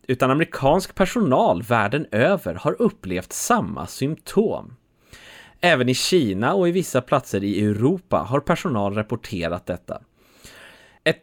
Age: 30-49